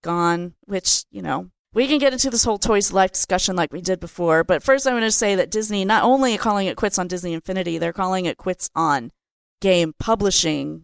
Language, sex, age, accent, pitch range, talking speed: English, female, 40-59, American, 175-230 Hz, 225 wpm